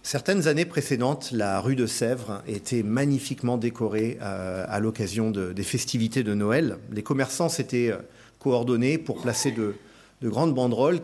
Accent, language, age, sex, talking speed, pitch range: French, French, 40-59, male, 140 wpm, 110-145 Hz